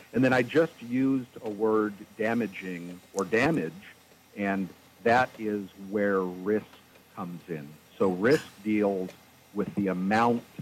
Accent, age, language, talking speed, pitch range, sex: American, 50-69, English, 130 wpm, 95-110 Hz, male